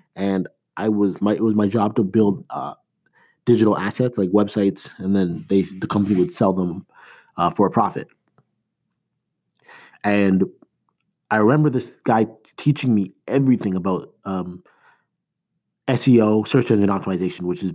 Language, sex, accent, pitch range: English, male, American, 90-120 Hz